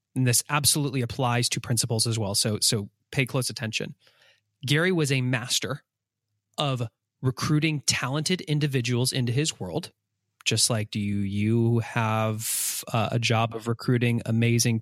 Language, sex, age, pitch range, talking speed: English, male, 30-49, 115-145 Hz, 145 wpm